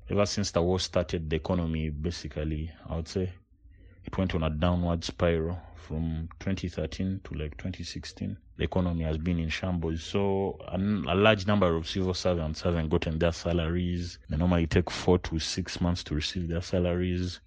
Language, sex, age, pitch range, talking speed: Hebrew, male, 30-49, 80-95 Hz, 180 wpm